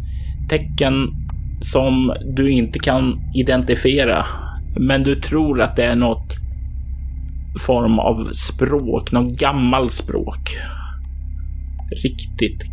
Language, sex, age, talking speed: Swedish, male, 30-49, 95 wpm